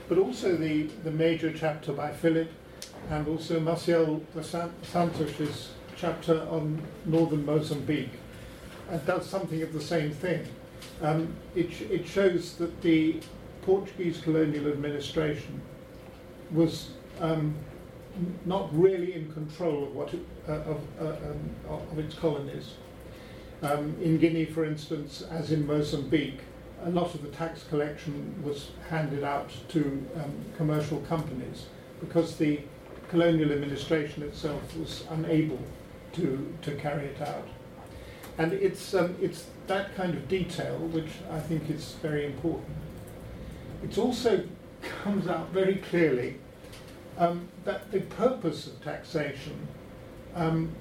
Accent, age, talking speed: British, 50-69, 125 wpm